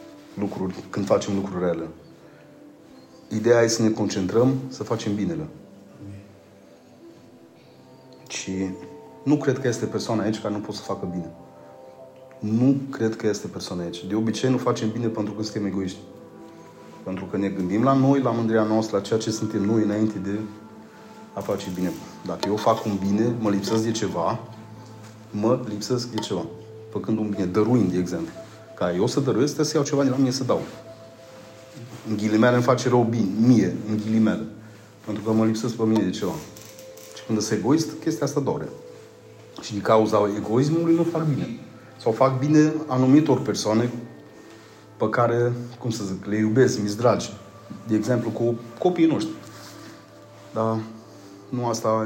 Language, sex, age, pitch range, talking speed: Romanian, male, 30-49, 105-120 Hz, 165 wpm